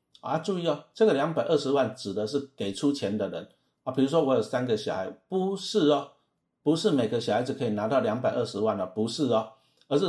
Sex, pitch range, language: male, 110-145 Hz, Chinese